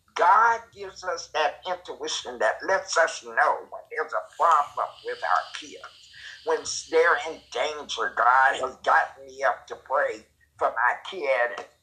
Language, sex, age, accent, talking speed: English, male, 50-69, American, 150 wpm